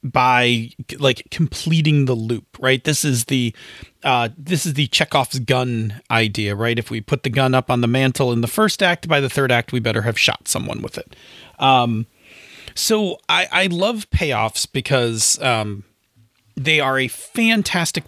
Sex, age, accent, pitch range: male, 40-59, American, 115-150 Hz